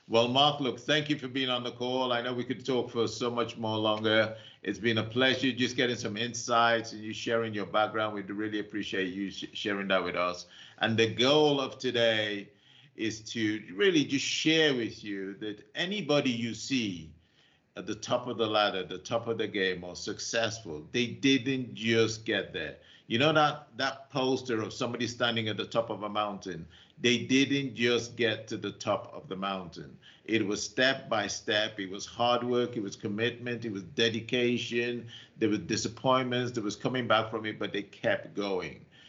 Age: 50-69